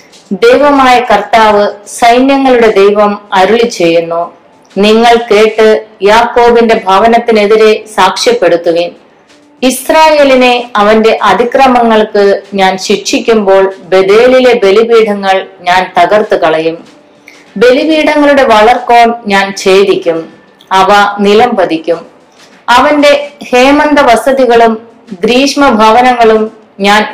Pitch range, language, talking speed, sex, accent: 195-240 Hz, Malayalam, 70 wpm, female, native